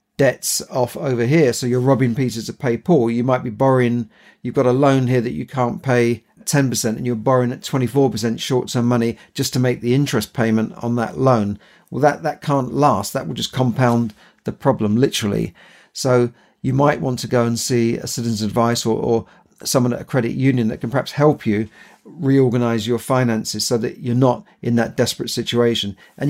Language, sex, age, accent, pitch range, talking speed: English, male, 50-69, British, 115-130 Hz, 200 wpm